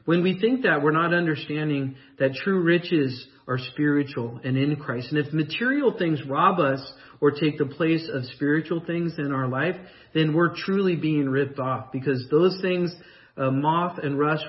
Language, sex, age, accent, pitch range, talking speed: English, male, 40-59, American, 145-175 Hz, 180 wpm